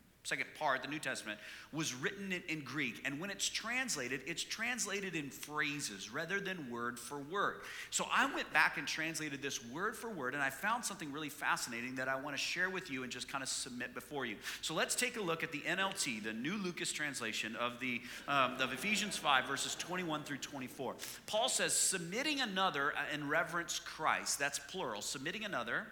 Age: 40-59